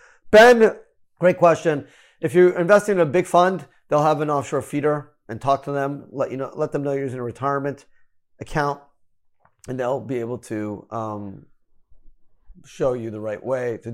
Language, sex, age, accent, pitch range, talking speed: English, male, 30-49, American, 120-155 Hz, 180 wpm